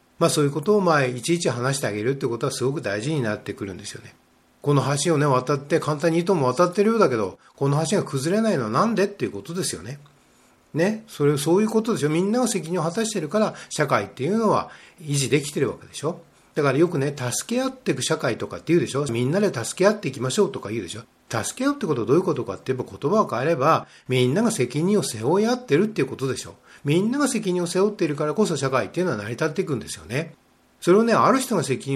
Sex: male